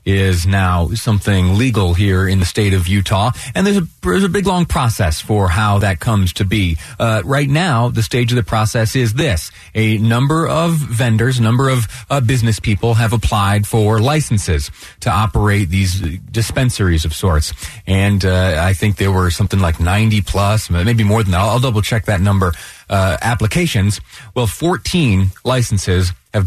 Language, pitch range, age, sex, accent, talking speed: English, 95-120 Hz, 30-49, male, American, 180 wpm